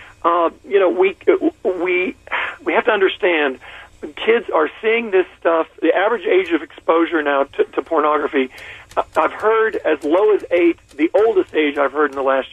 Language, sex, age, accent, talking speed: English, male, 50-69, American, 180 wpm